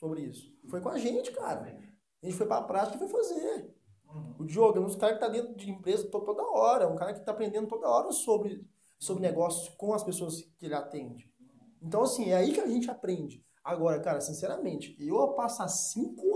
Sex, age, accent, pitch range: male, 20-39, Brazilian, 160-215 Hz